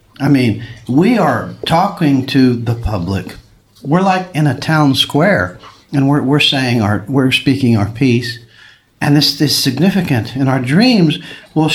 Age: 60-79